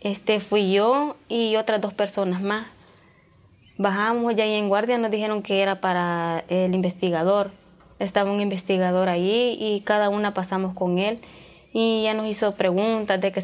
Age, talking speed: 20-39, 165 wpm